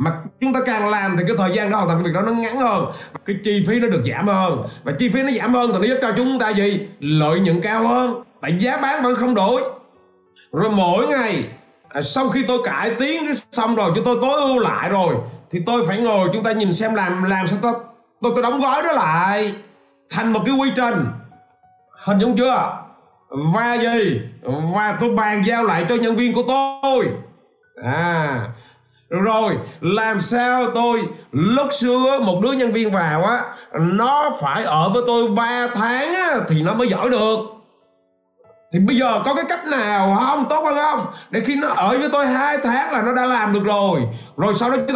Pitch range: 190-255 Hz